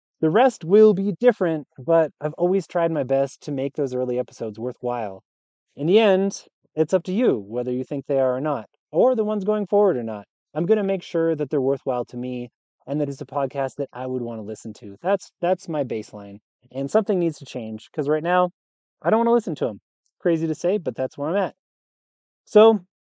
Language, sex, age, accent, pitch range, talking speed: English, male, 30-49, American, 135-185 Hz, 230 wpm